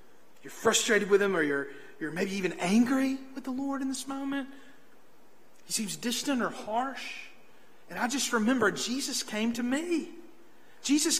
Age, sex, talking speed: 40-59, male, 160 wpm